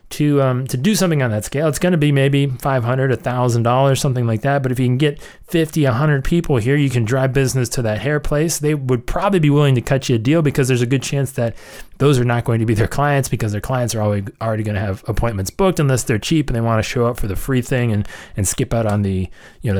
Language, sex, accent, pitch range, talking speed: English, male, American, 115-150 Hz, 280 wpm